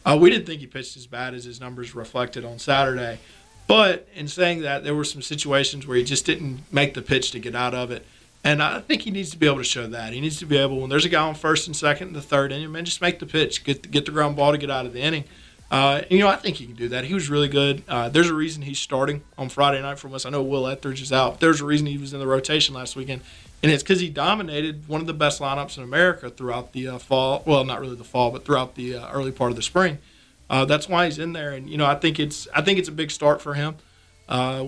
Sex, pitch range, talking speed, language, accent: male, 130-155 Hz, 295 wpm, English, American